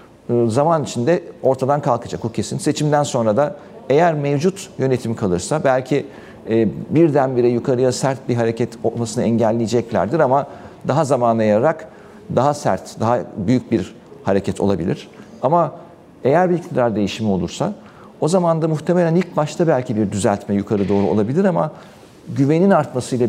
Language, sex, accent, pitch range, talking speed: Turkish, male, native, 115-165 Hz, 135 wpm